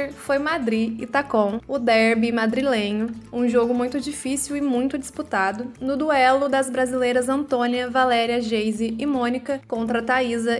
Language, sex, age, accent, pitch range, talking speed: Portuguese, female, 20-39, Brazilian, 235-280 Hz, 140 wpm